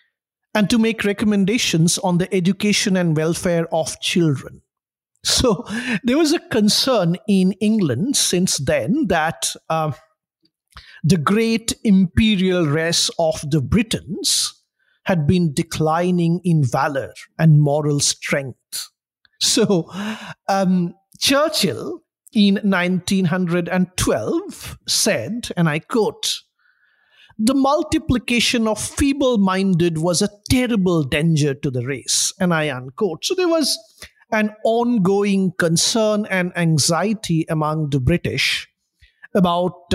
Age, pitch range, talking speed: 50-69, 165-215 Hz, 110 wpm